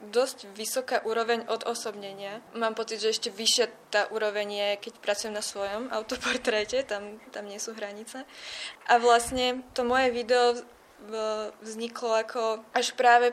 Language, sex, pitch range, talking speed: Czech, female, 215-230 Hz, 145 wpm